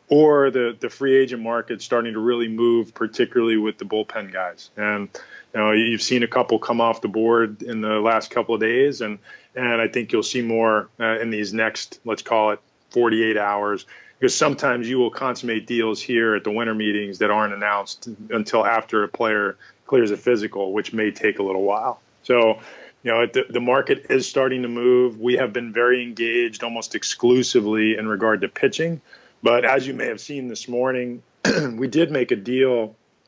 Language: English